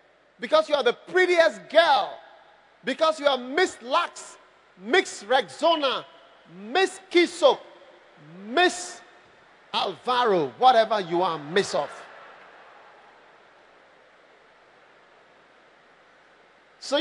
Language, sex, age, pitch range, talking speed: English, male, 40-59, 275-370 Hz, 80 wpm